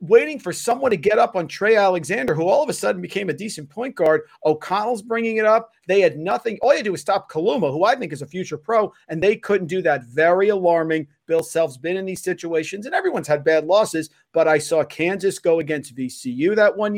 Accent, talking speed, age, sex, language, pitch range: American, 235 wpm, 40-59, male, English, 150-185 Hz